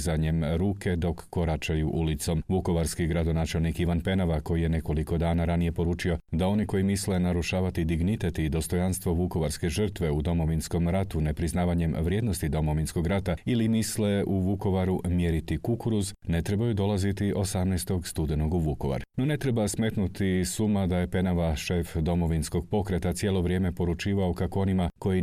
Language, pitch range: Croatian, 80-100 Hz